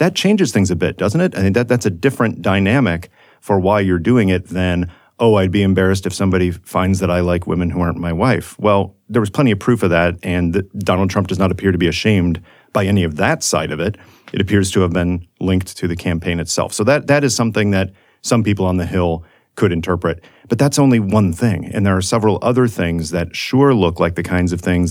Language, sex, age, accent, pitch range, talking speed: English, male, 40-59, American, 85-100 Hz, 250 wpm